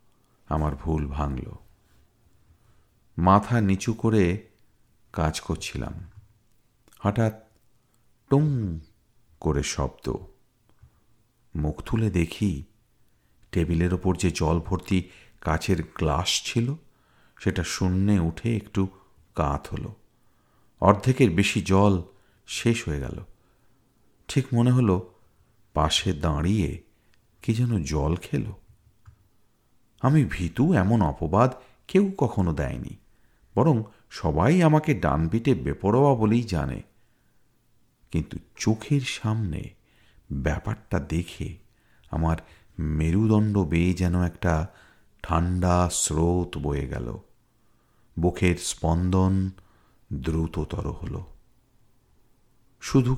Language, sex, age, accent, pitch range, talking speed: Bengali, male, 50-69, native, 85-115 Hz, 85 wpm